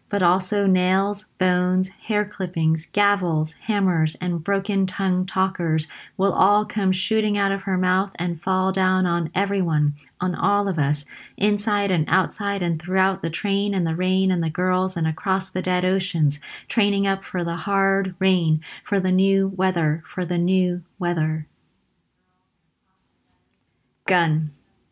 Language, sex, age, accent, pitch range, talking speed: English, female, 30-49, American, 170-195 Hz, 150 wpm